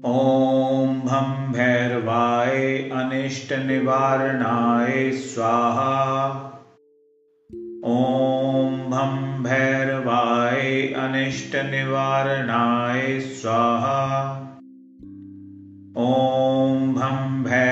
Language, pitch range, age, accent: Hindi, 125-135 Hz, 40-59, native